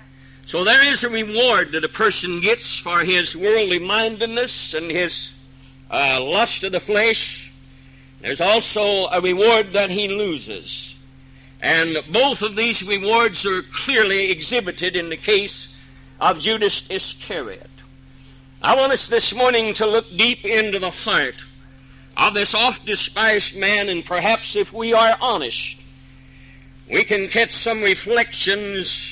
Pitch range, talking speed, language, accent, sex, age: 140-220 Hz, 140 wpm, English, American, male, 60-79